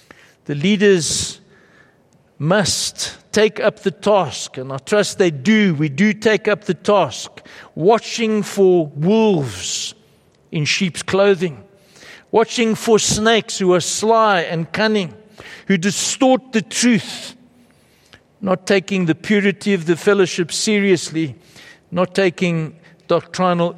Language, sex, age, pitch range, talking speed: English, male, 60-79, 165-220 Hz, 120 wpm